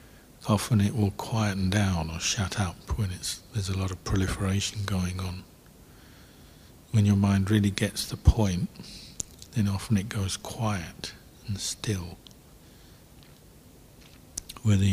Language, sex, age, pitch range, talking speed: English, male, 60-79, 95-110 Hz, 125 wpm